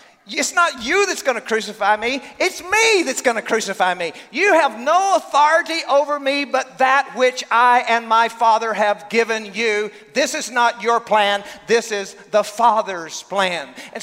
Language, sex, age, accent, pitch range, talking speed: English, male, 40-59, American, 215-305 Hz, 170 wpm